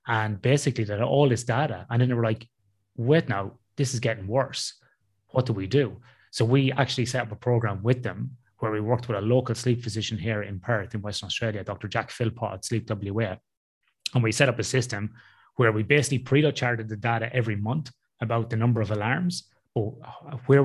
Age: 30-49